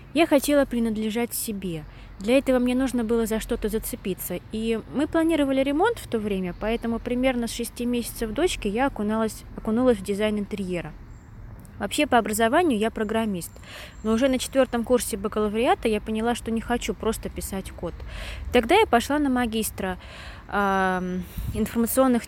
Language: Russian